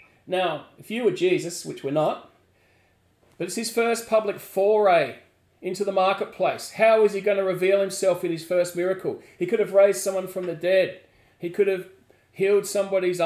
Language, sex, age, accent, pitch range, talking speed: English, male, 40-59, Australian, 155-190 Hz, 185 wpm